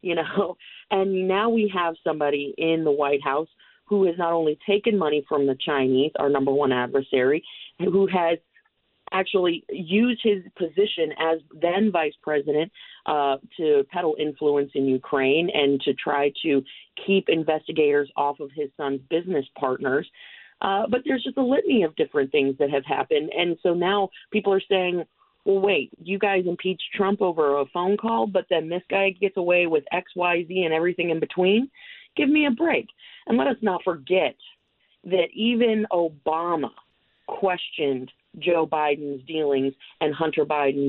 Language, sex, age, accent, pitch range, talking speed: English, female, 40-59, American, 145-190 Hz, 165 wpm